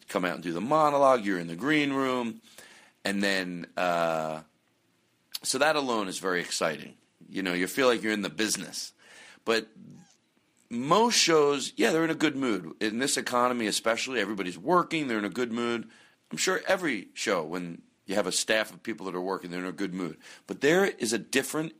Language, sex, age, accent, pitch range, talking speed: English, male, 40-59, American, 100-155 Hz, 200 wpm